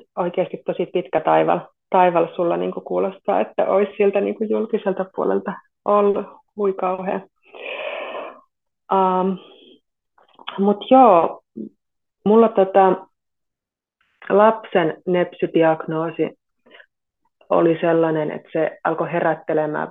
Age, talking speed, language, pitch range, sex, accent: 30-49, 90 wpm, Finnish, 165-205 Hz, female, native